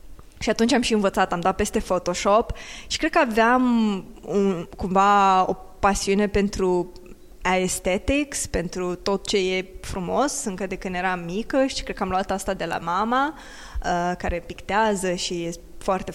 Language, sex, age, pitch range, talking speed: Romanian, female, 20-39, 185-235 Hz, 165 wpm